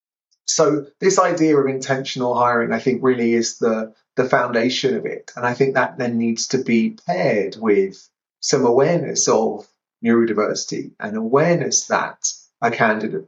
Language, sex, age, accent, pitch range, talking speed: English, male, 30-49, British, 115-150 Hz, 155 wpm